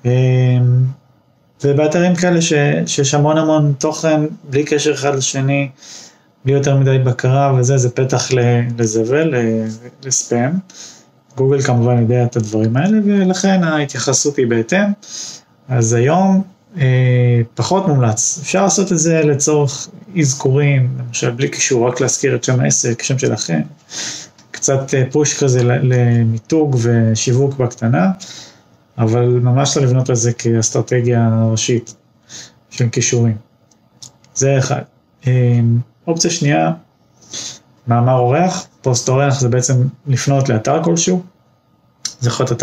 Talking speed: 115 wpm